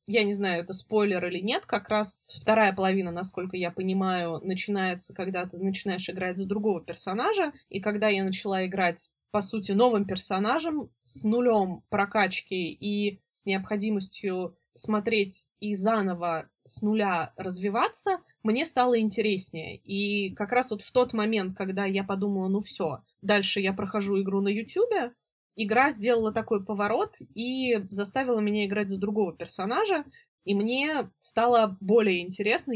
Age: 20-39